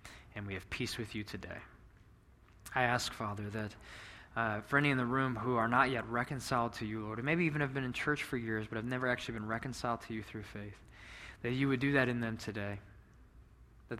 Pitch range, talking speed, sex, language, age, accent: 105-130 Hz, 225 wpm, male, English, 20-39, American